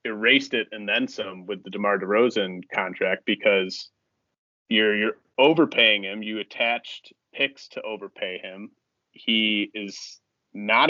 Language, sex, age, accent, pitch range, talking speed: English, male, 30-49, American, 100-125 Hz, 130 wpm